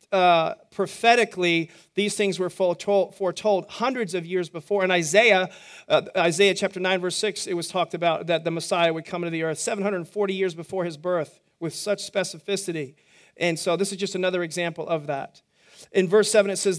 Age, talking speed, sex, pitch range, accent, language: 40-59, 190 wpm, male, 175-210 Hz, American, English